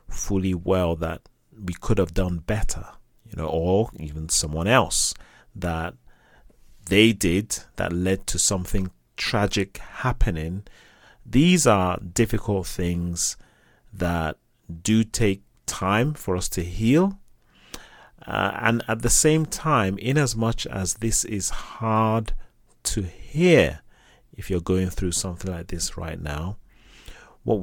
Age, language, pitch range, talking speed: 30-49, English, 90-110 Hz, 130 wpm